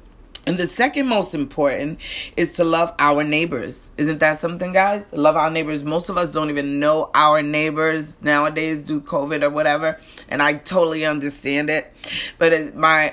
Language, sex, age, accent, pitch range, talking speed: English, female, 30-49, American, 145-170 Hz, 175 wpm